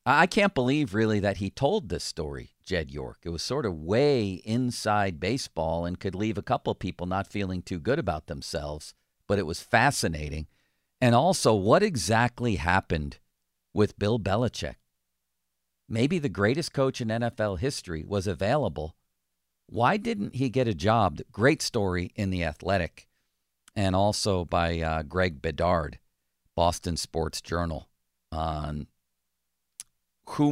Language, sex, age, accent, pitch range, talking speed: English, male, 50-69, American, 85-115 Hz, 145 wpm